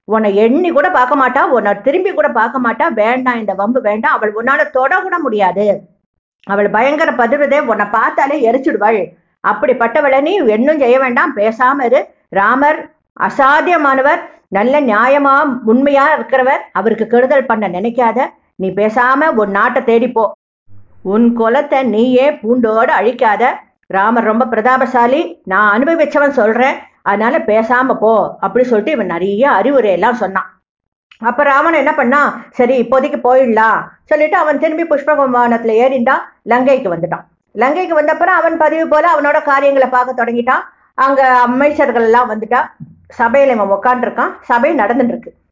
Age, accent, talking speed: 50-69, Indian, 125 wpm